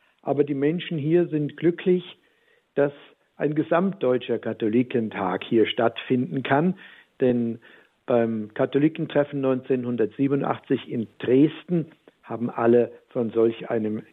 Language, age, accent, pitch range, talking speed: German, 60-79, German, 120-155 Hz, 100 wpm